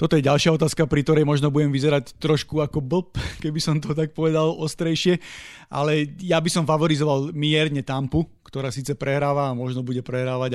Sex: male